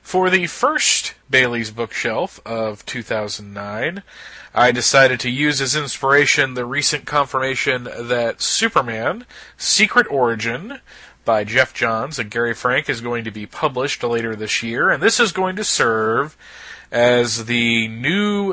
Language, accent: English, American